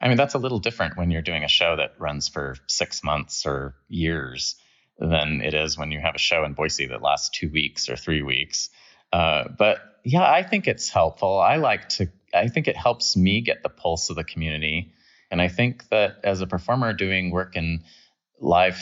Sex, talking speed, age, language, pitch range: male, 215 wpm, 30-49, English, 80-100 Hz